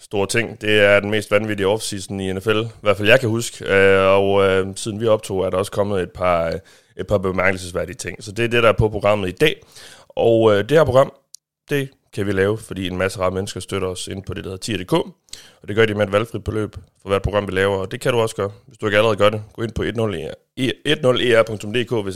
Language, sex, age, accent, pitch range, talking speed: Danish, male, 30-49, native, 95-115 Hz, 250 wpm